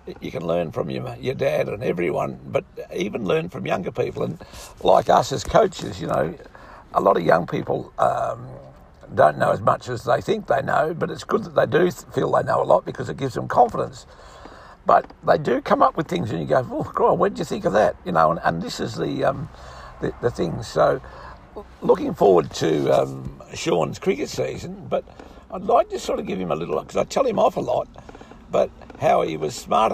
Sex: male